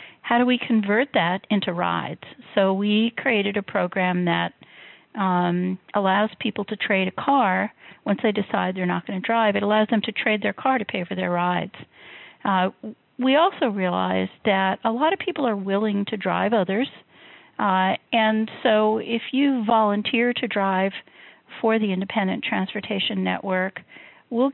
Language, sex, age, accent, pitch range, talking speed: English, female, 50-69, American, 185-230 Hz, 165 wpm